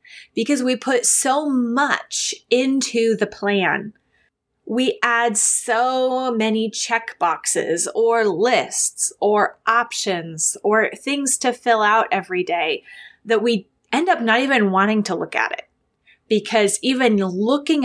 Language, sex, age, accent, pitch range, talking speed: English, female, 20-39, American, 210-255 Hz, 130 wpm